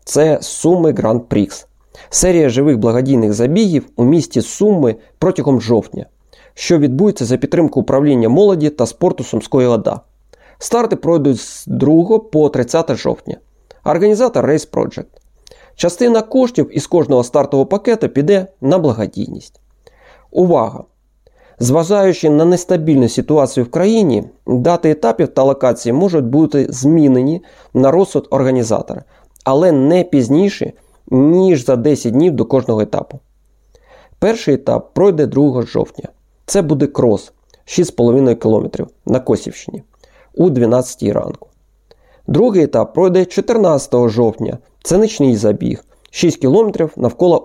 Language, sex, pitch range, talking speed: Ukrainian, male, 125-180 Hz, 120 wpm